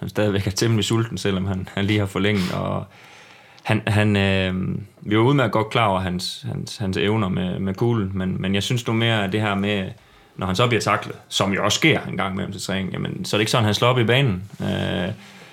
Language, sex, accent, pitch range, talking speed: Danish, male, native, 100-120 Hz, 255 wpm